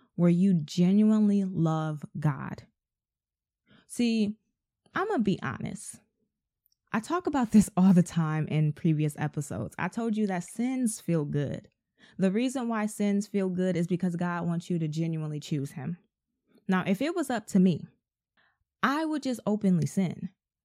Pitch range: 170-215 Hz